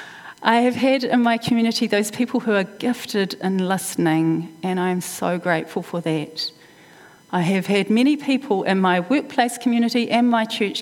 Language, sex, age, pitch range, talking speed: English, female, 40-59, 180-235 Hz, 175 wpm